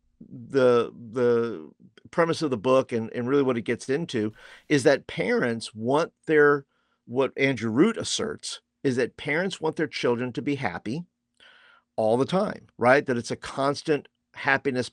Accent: American